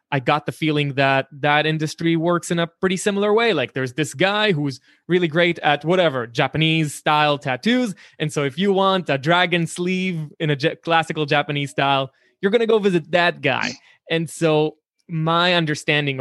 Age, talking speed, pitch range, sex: 20-39, 180 wpm, 135-170 Hz, male